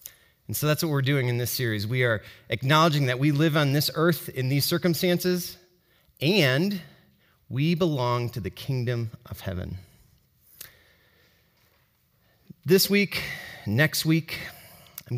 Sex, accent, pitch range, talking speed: male, American, 120-170 Hz, 135 wpm